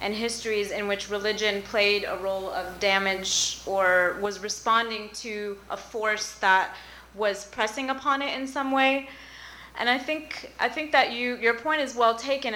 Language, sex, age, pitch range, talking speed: English, female, 30-49, 205-245 Hz, 170 wpm